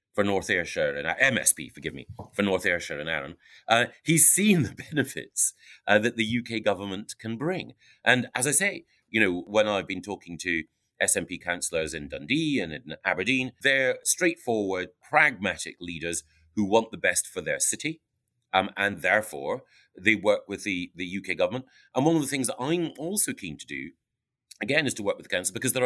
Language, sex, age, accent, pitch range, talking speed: English, male, 30-49, British, 95-135 Hz, 195 wpm